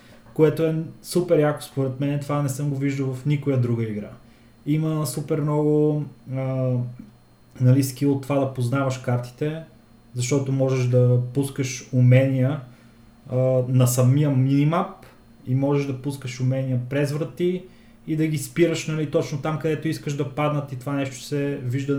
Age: 20-39